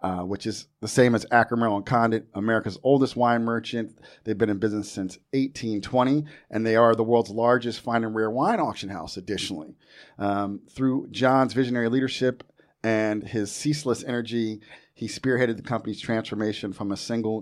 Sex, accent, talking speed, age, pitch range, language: male, American, 170 wpm, 40-59, 100-115 Hz, English